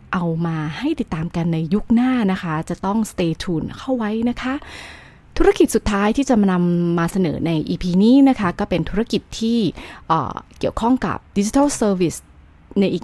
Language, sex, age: Thai, female, 20-39